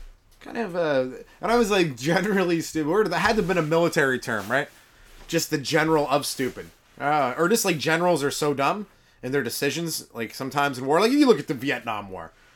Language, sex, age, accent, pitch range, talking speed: English, male, 30-49, American, 135-195 Hz, 225 wpm